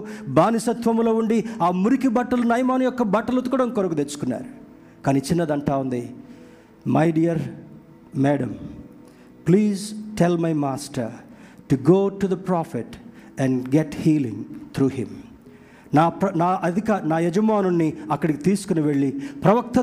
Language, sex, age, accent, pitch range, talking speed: Telugu, male, 50-69, native, 160-220 Hz, 110 wpm